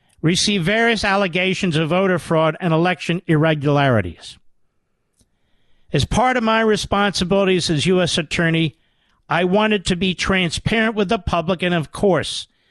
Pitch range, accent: 170-220 Hz, American